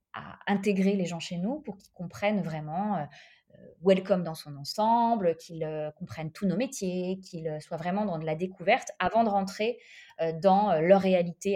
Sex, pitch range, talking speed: female, 170-210 Hz, 190 wpm